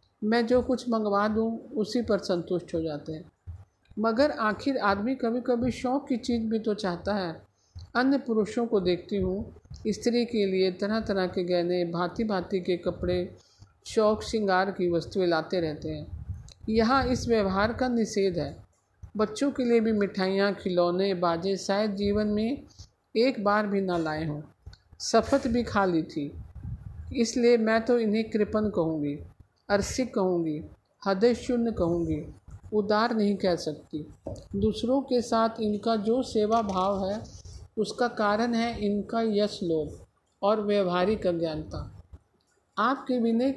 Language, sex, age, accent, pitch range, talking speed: Hindi, male, 50-69, native, 180-230 Hz, 145 wpm